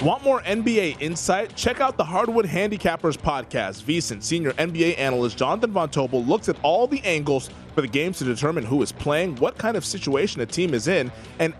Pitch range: 135-200 Hz